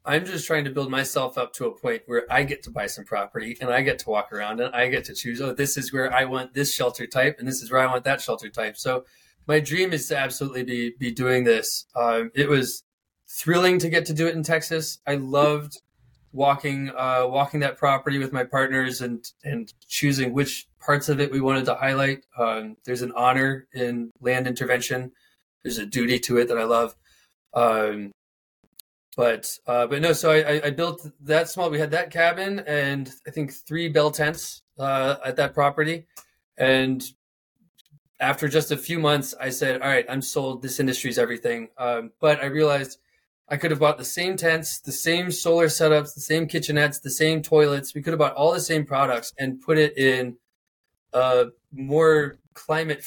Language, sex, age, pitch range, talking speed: English, male, 20-39, 125-155 Hz, 200 wpm